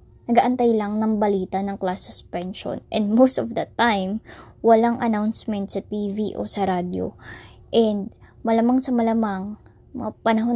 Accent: native